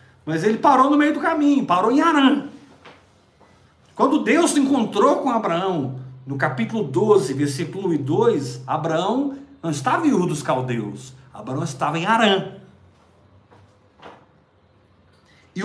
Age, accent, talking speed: 50-69, Brazilian, 125 wpm